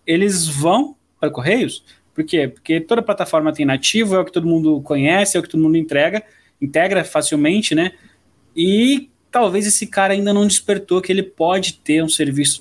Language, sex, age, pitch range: Portuguese, male, 20-39, 145-185 Hz